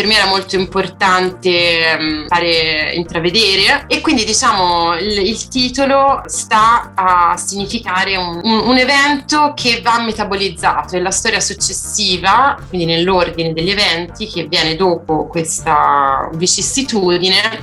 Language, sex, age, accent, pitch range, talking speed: Italian, female, 30-49, native, 165-205 Hz, 125 wpm